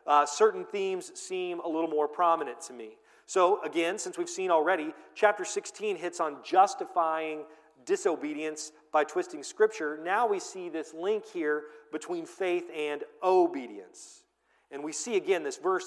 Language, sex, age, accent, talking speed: English, male, 40-59, American, 155 wpm